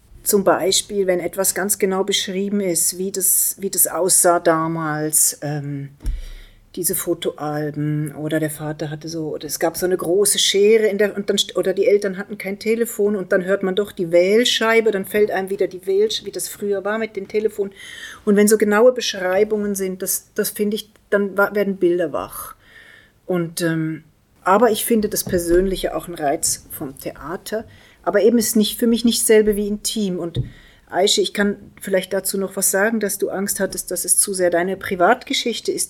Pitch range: 170-210 Hz